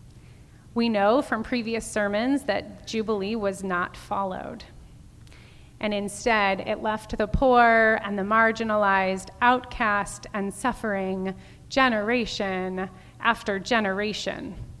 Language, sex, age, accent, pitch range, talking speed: English, female, 30-49, American, 195-240 Hz, 100 wpm